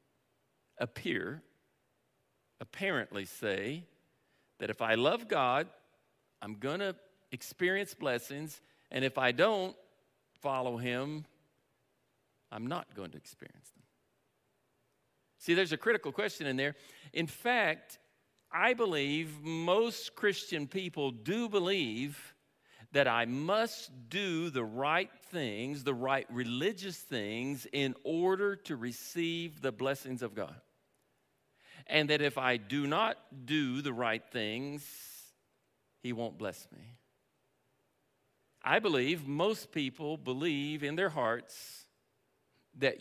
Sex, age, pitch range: male, 50-69, 130-180 Hz